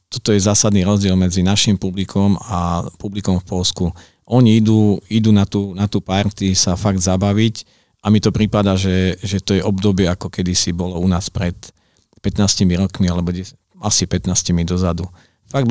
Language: Slovak